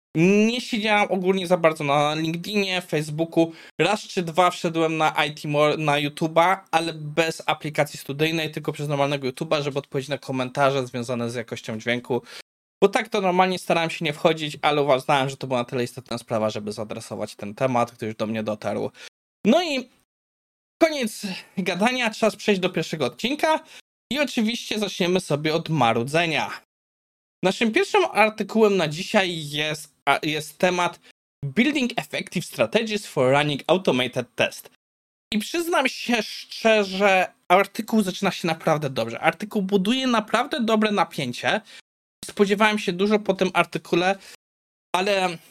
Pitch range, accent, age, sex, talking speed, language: 145-210 Hz, native, 20-39, male, 145 wpm, Polish